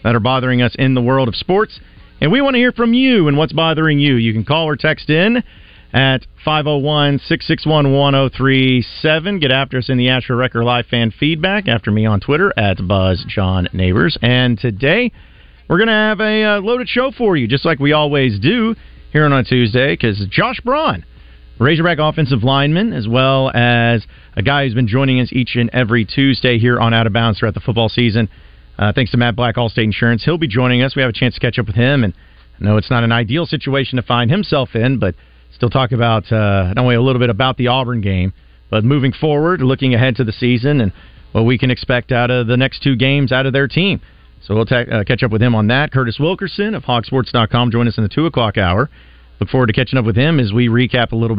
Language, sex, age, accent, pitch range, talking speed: English, male, 40-59, American, 115-145 Hz, 230 wpm